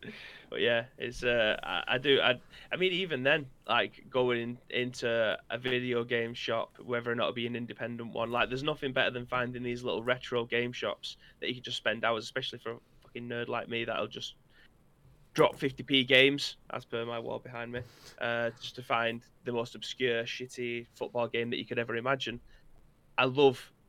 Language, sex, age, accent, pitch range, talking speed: English, male, 20-39, British, 115-130 Hz, 205 wpm